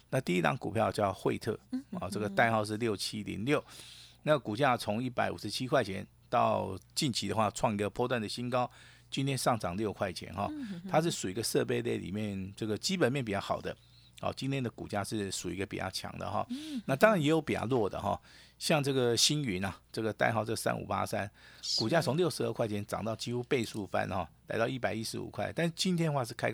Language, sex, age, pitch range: Chinese, male, 50-69, 105-135 Hz